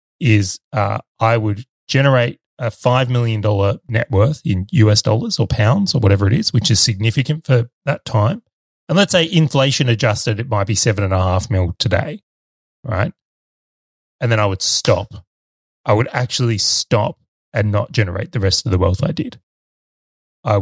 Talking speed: 165 wpm